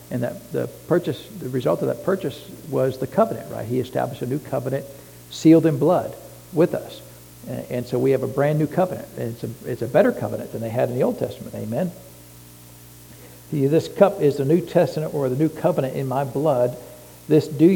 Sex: male